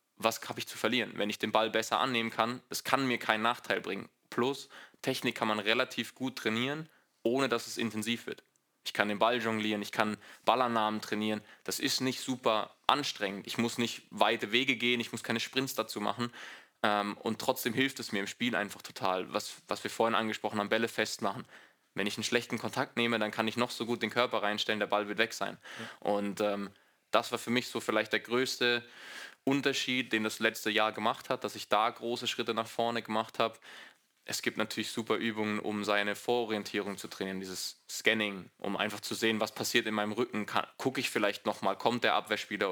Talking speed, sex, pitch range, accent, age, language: 205 wpm, male, 105-120 Hz, German, 20-39, German